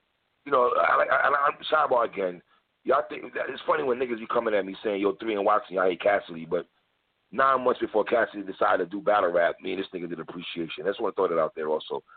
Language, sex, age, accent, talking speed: English, male, 40-59, American, 255 wpm